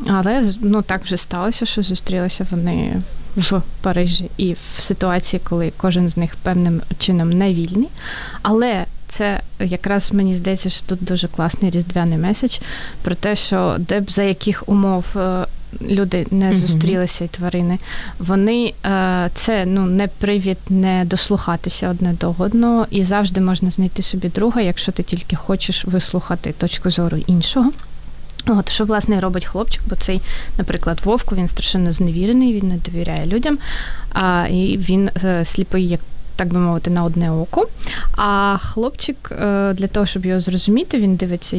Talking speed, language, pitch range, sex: 155 wpm, Ukrainian, 175-205 Hz, female